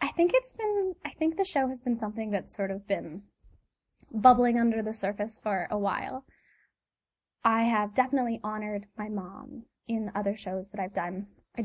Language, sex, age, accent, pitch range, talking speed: English, female, 10-29, American, 195-245 Hz, 180 wpm